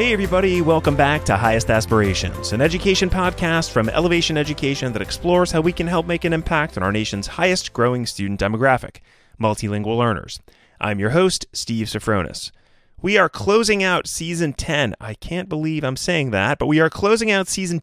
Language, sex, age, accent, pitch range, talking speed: English, male, 30-49, American, 110-170 Hz, 180 wpm